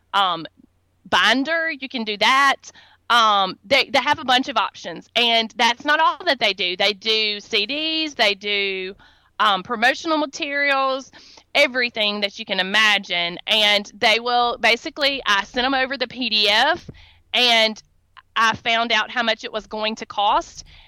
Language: English